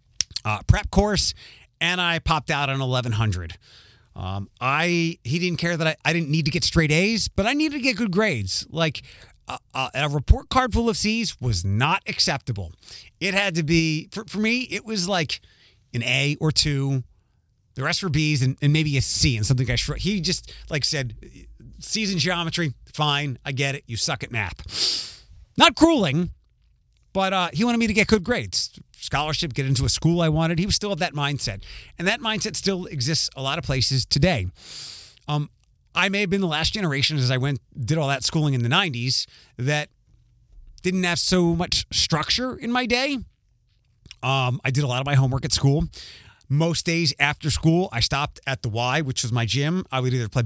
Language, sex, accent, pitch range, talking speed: English, male, American, 120-175 Hz, 205 wpm